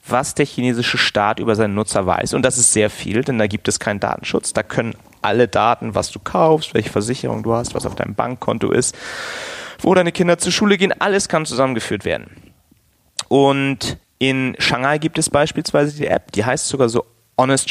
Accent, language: German, German